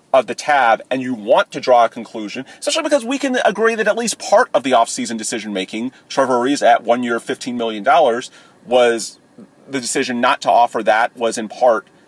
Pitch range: 115-140 Hz